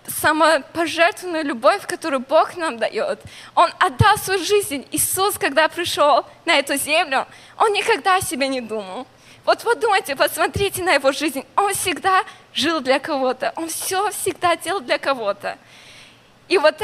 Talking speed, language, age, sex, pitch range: 150 wpm, Russian, 20-39, female, 260-345 Hz